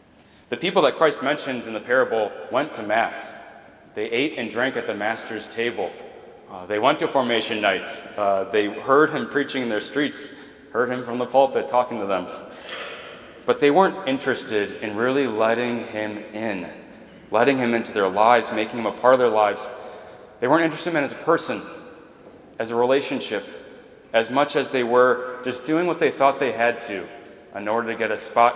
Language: English